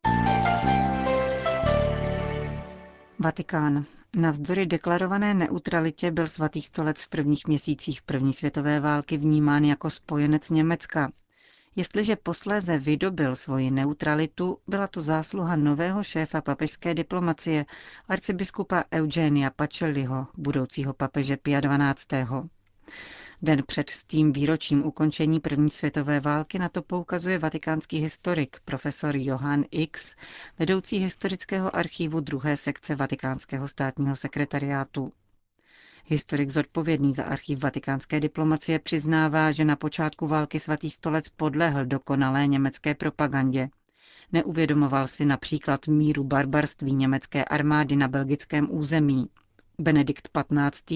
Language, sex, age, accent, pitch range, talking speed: Czech, female, 40-59, native, 140-160 Hz, 105 wpm